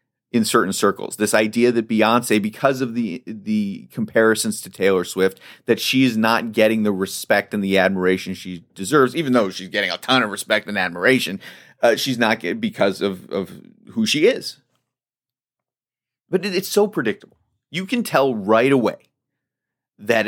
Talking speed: 170 wpm